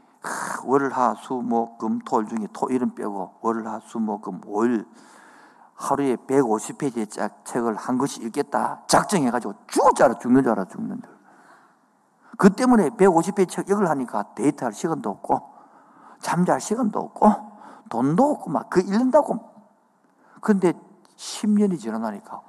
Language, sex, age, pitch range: Korean, male, 50-69, 140-235 Hz